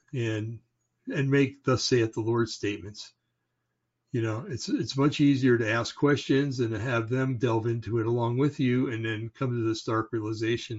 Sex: male